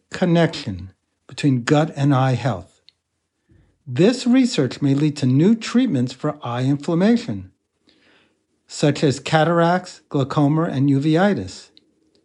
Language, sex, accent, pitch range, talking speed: English, male, American, 130-185 Hz, 110 wpm